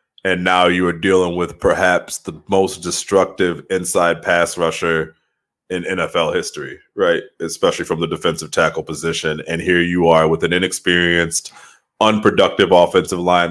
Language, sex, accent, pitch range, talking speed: English, male, American, 90-110 Hz, 145 wpm